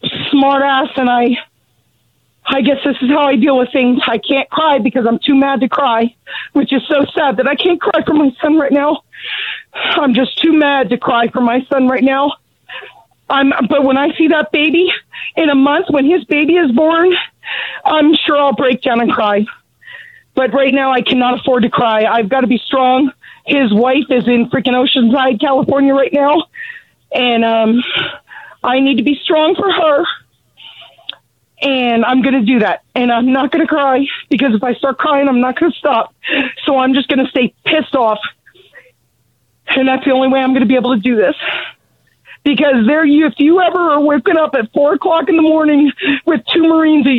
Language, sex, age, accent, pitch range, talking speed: English, female, 40-59, American, 255-305 Hz, 205 wpm